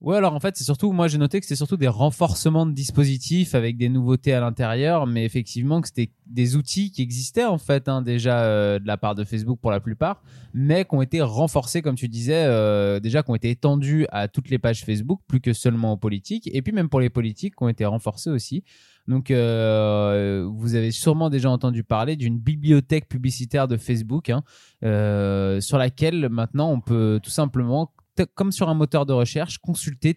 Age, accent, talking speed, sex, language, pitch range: 20-39, French, 215 wpm, male, French, 110-150 Hz